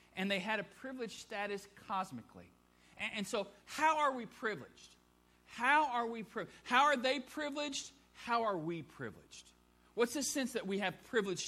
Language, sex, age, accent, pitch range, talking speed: English, male, 50-69, American, 155-225 Hz, 150 wpm